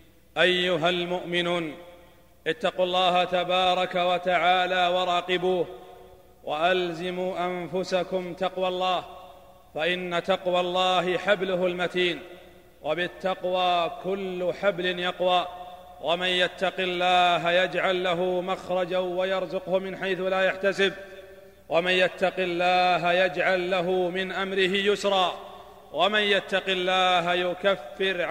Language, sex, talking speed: Arabic, male, 90 wpm